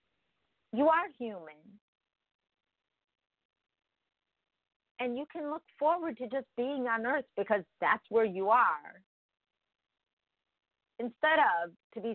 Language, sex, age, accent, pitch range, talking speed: English, female, 50-69, American, 190-275 Hz, 110 wpm